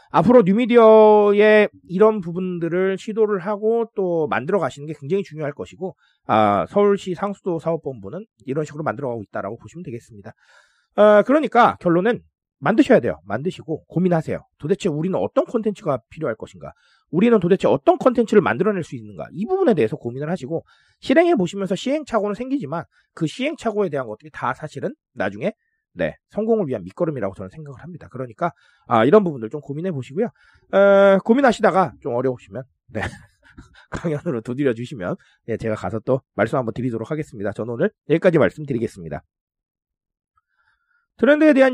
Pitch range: 130-210 Hz